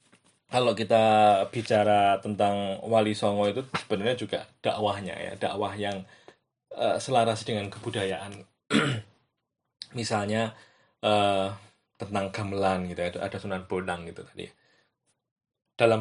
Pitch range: 100-120 Hz